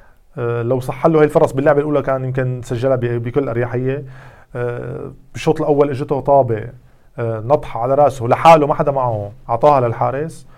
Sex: male